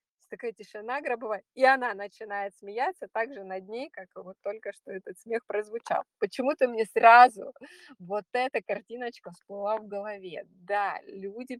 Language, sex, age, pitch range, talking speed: Russian, female, 20-39, 185-250 Hz, 145 wpm